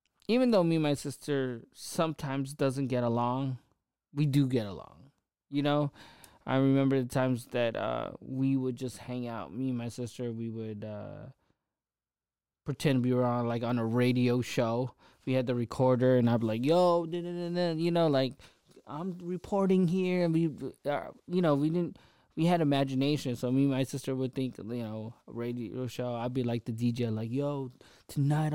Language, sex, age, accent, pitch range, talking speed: English, male, 20-39, American, 120-145 Hz, 185 wpm